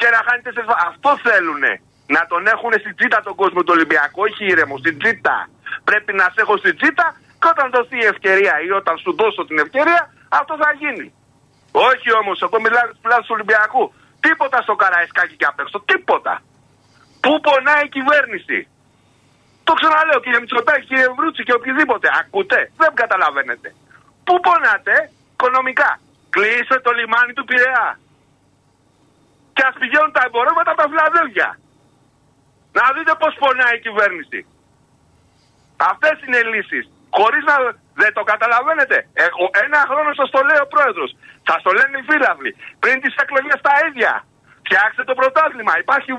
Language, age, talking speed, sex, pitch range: Greek, 50-69, 190 wpm, male, 210-300 Hz